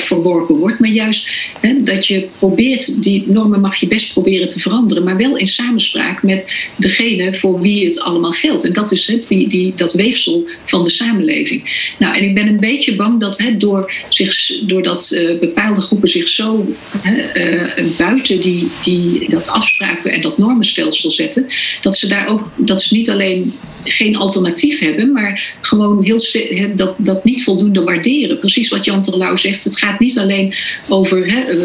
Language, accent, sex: Dutch, Dutch, female